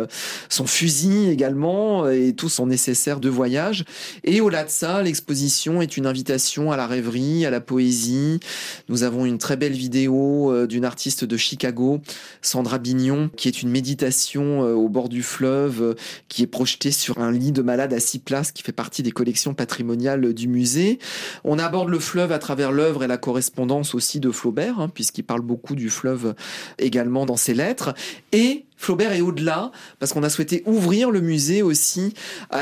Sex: male